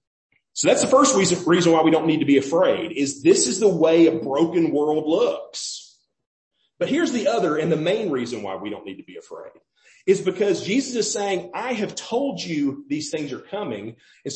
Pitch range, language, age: 155-230 Hz, English, 40-59